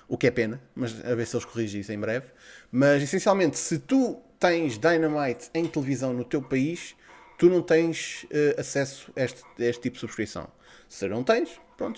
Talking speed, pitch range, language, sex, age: 190 wpm, 125-165 Hz, Portuguese, male, 20-39